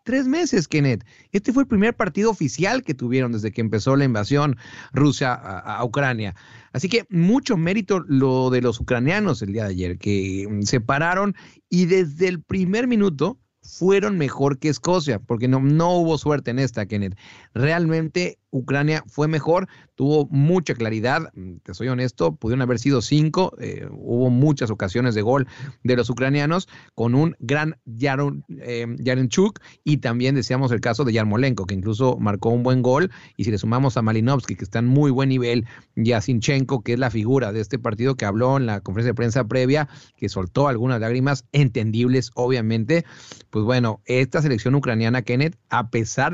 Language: English